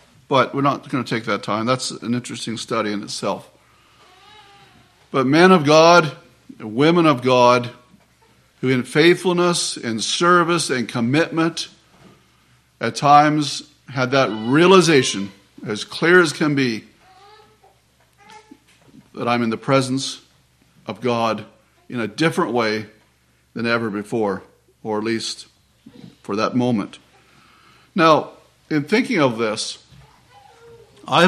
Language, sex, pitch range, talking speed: English, male, 110-160 Hz, 125 wpm